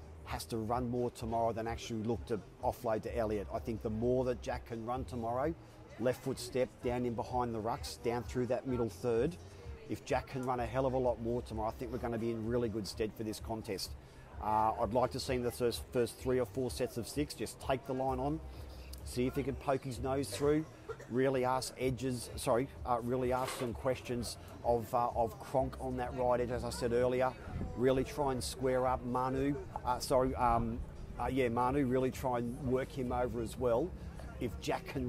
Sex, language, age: male, English, 40-59